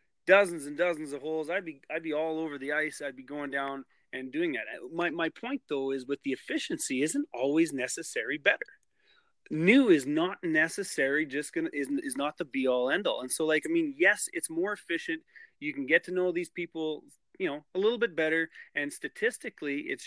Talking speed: 210 wpm